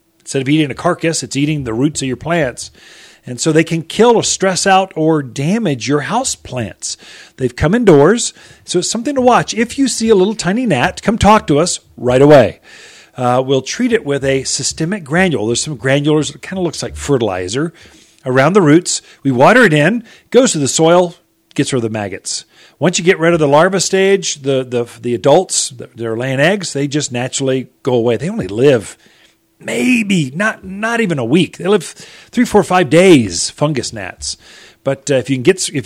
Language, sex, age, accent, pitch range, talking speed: English, male, 40-59, American, 135-195 Hz, 205 wpm